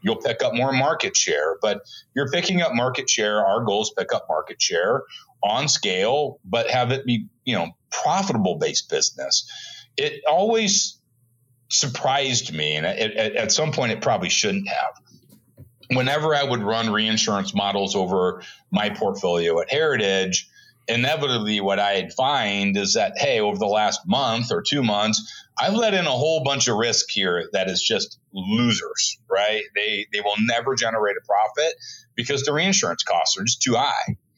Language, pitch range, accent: English, 105-150 Hz, American